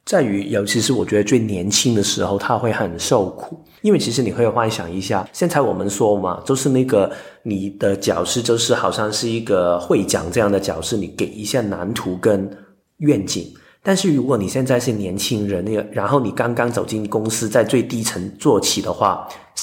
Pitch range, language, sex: 100-140 Hz, Chinese, male